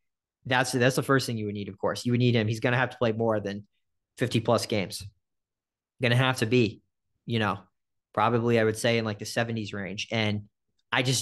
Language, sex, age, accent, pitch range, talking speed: English, male, 30-49, American, 105-125 Hz, 235 wpm